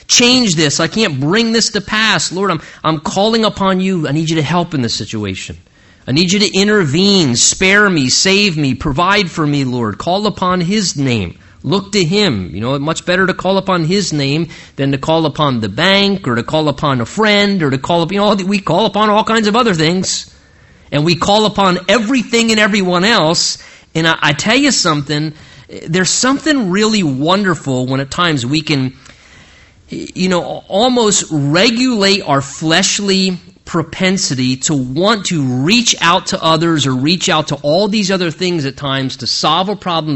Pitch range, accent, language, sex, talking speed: 140-200 Hz, American, English, male, 195 wpm